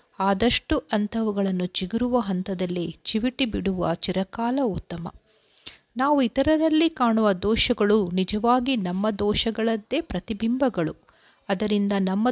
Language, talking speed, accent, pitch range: Kannada, 90 wpm, native, 190-240 Hz